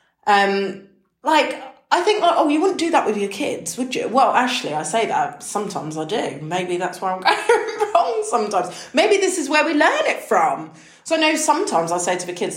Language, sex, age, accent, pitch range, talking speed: English, female, 30-49, British, 185-245 Hz, 220 wpm